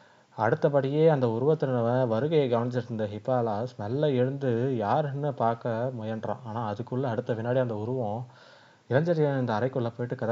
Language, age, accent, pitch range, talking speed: Tamil, 20-39, native, 110-130 Hz, 120 wpm